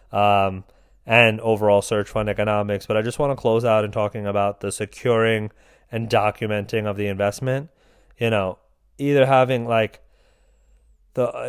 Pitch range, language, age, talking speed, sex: 105-120 Hz, English, 20-39, 150 wpm, male